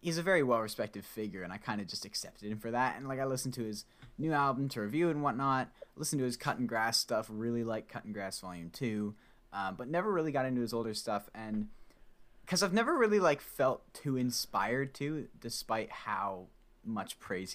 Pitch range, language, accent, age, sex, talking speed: 105-130 Hz, English, American, 10-29, male, 215 wpm